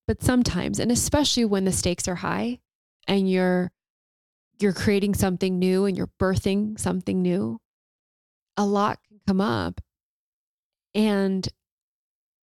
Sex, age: female, 20-39